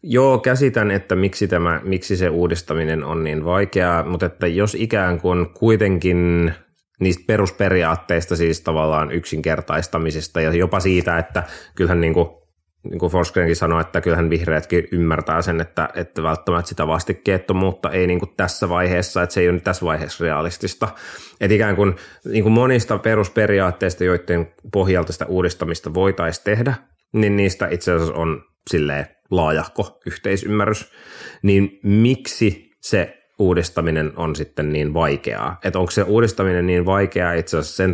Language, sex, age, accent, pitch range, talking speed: Finnish, male, 30-49, native, 85-100 Hz, 145 wpm